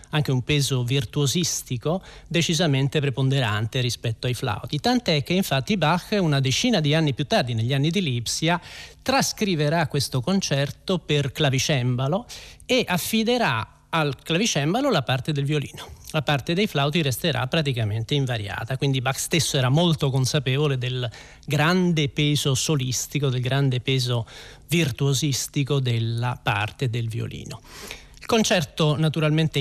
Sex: male